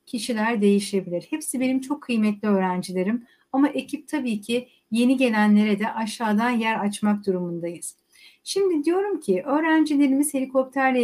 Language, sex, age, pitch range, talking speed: Turkish, female, 60-79, 215-280 Hz, 125 wpm